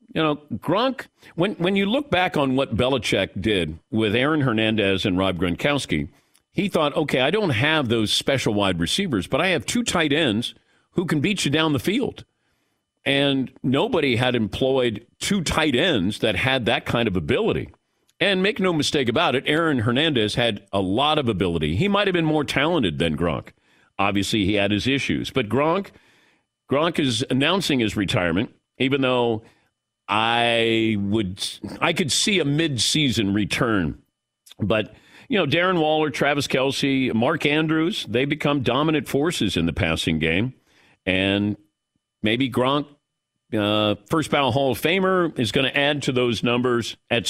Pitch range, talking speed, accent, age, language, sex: 110-150 Hz, 165 wpm, American, 50-69, English, male